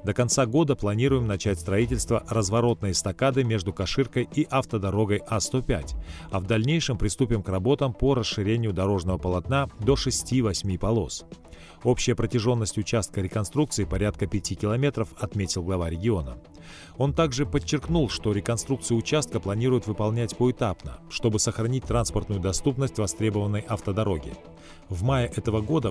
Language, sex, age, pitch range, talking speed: Russian, male, 40-59, 100-125 Hz, 125 wpm